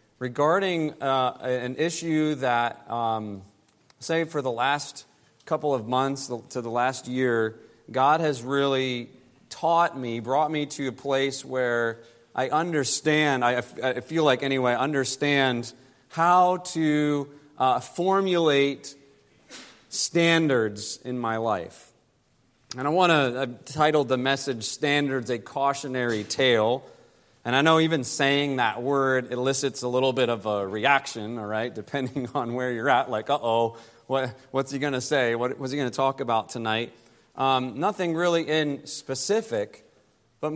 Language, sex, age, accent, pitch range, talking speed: English, male, 30-49, American, 125-160 Hz, 145 wpm